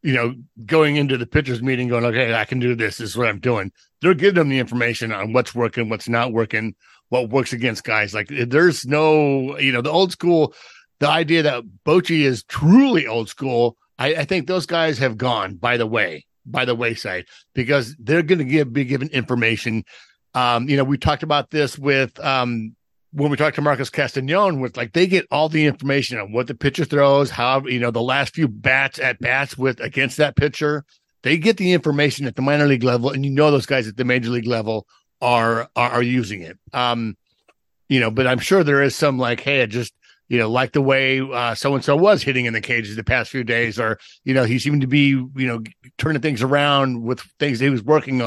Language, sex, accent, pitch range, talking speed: English, male, American, 120-145 Hz, 225 wpm